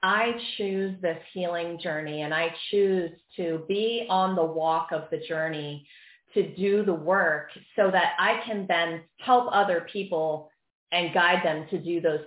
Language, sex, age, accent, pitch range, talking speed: English, female, 30-49, American, 165-210 Hz, 165 wpm